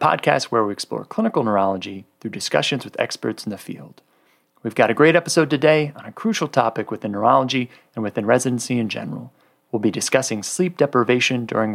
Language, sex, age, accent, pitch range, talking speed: English, male, 30-49, American, 115-145 Hz, 185 wpm